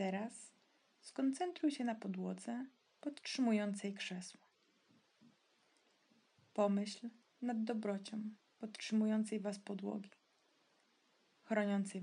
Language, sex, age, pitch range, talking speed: Polish, female, 20-39, 195-230 Hz, 70 wpm